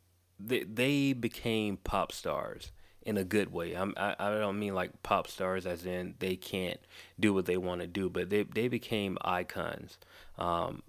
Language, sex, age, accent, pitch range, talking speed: English, male, 20-39, American, 90-95 Hz, 180 wpm